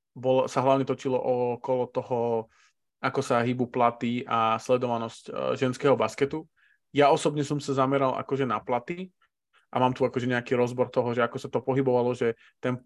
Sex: male